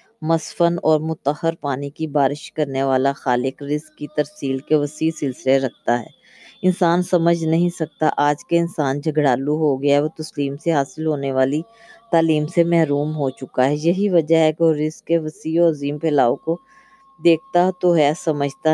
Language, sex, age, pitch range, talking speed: Urdu, female, 20-39, 145-170 Hz, 175 wpm